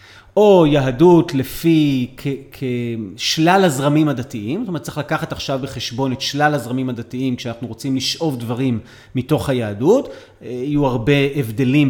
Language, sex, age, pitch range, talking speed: Hebrew, male, 30-49, 125-155 Hz, 130 wpm